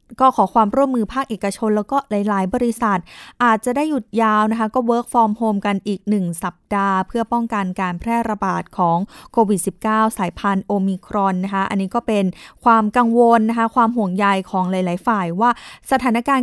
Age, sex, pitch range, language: 20-39, female, 205-245 Hz, Thai